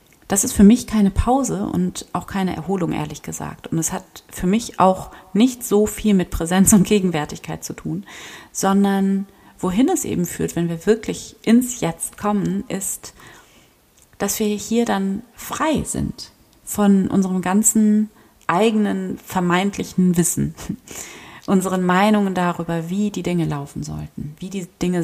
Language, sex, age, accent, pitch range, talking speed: German, female, 30-49, German, 165-205 Hz, 150 wpm